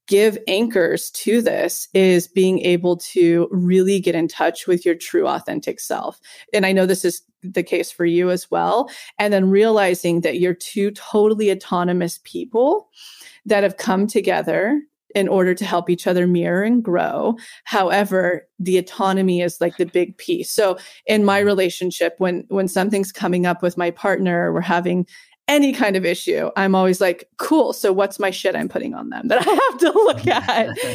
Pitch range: 175-205 Hz